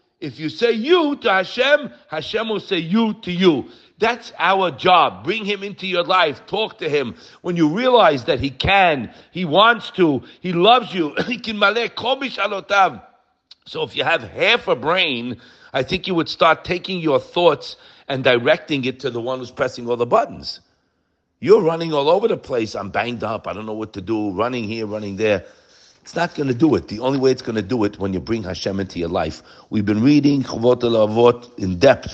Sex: male